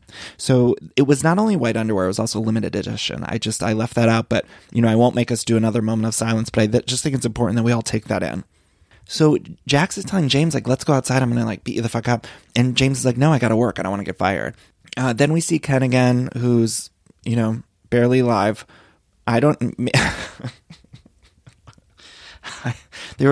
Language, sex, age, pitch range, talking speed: English, male, 20-39, 105-125 Hz, 225 wpm